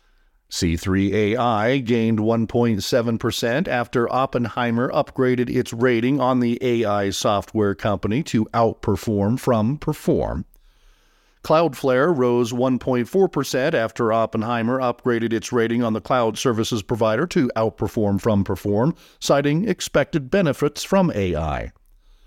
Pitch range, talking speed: 110-130 Hz, 110 wpm